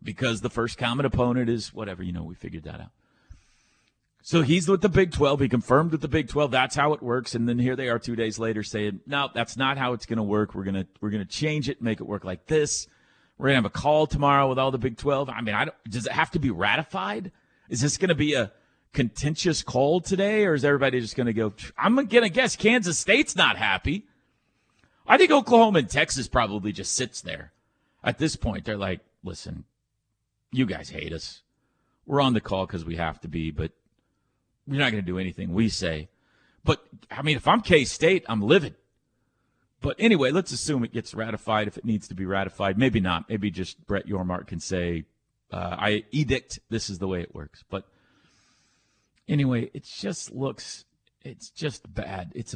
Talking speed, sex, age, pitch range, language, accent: 215 wpm, male, 40-59, 105-140 Hz, English, American